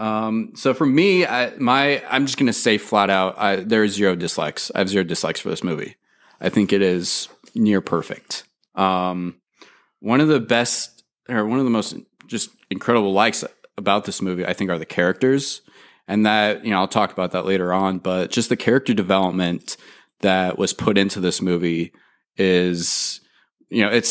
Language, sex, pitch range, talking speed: English, male, 95-110 Hz, 185 wpm